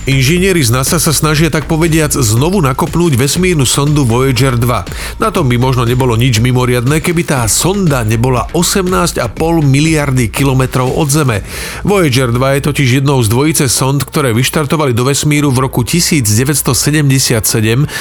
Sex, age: male, 40-59